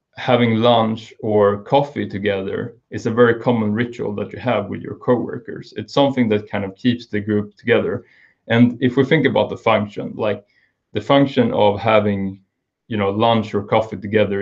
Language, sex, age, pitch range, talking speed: Russian, male, 20-39, 105-115 Hz, 180 wpm